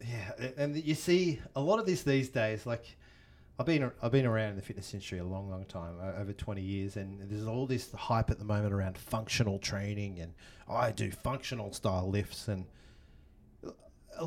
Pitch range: 110-140 Hz